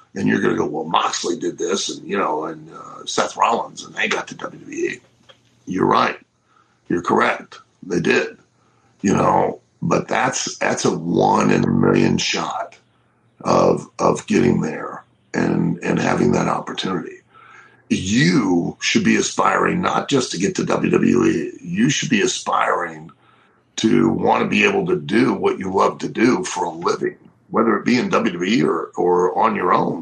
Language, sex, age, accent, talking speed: English, male, 60-79, American, 175 wpm